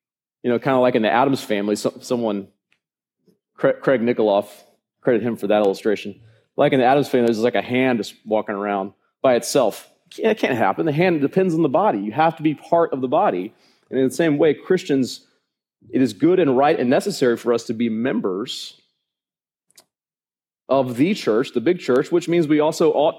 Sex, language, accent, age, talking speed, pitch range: male, English, American, 30-49, 200 wpm, 110-150 Hz